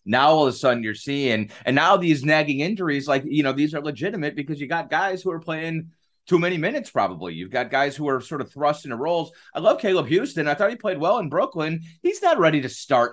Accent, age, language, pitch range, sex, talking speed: American, 30-49, English, 100-150 Hz, male, 250 wpm